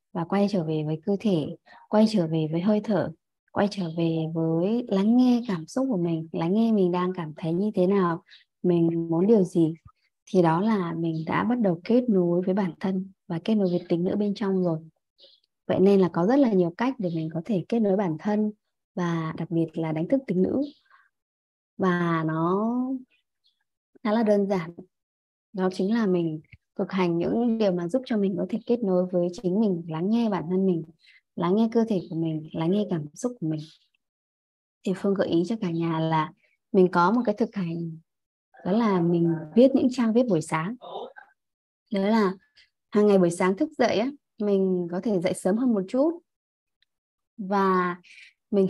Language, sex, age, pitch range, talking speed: Vietnamese, male, 20-39, 170-215 Hz, 200 wpm